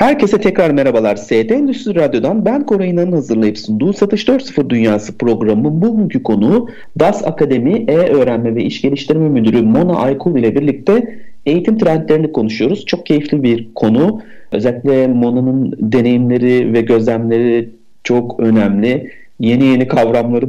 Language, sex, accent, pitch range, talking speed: Turkish, male, native, 115-175 Hz, 130 wpm